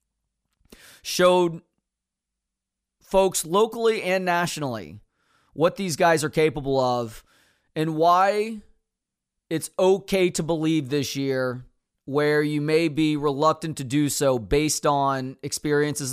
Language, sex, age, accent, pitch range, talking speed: English, male, 30-49, American, 140-180 Hz, 110 wpm